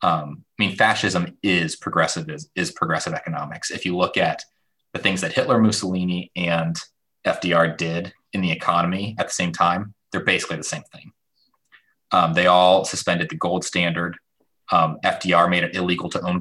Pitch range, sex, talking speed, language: 85-95 Hz, male, 175 wpm, English